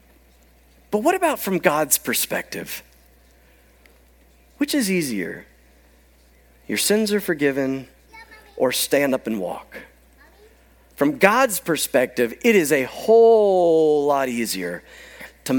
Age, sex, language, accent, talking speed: 40-59, male, English, American, 110 wpm